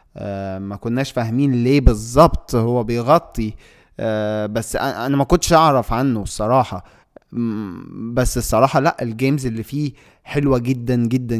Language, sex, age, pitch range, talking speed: Arabic, male, 20-39, 115-145 Hz, 120 wpm